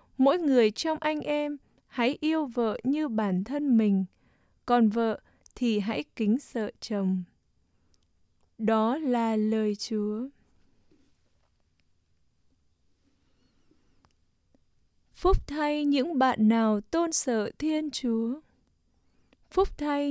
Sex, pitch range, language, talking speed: female, 215-295 Hz, English, 100 wpm